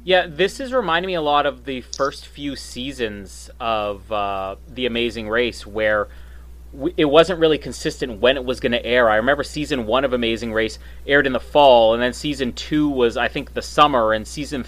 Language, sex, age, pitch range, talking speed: English, male, 30-49, 110-135 Hz, 205 wpm